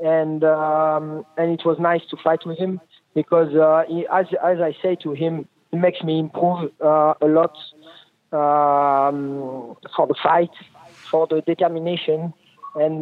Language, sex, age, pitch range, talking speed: English, male, 20-39, 155-175 Hz, 155 wpm